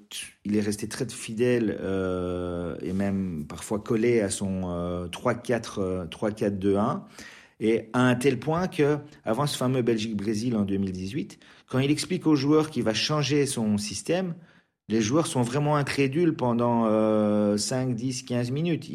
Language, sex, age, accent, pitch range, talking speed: French, male, 40-59, French, 105-130 Hz, 150 wpm